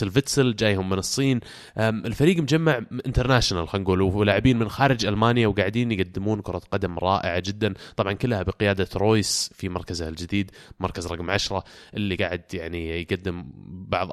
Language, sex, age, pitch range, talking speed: Arabic, male, 20-39, 95-115 Hz, 135 wpm